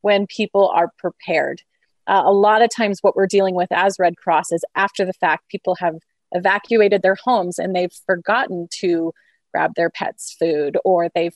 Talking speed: 185 wpm